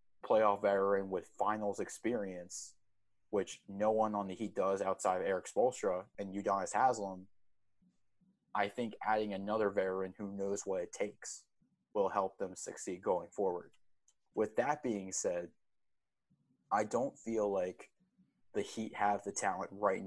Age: 20-39